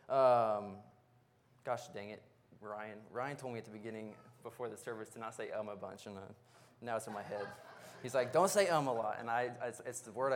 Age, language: 20-39, English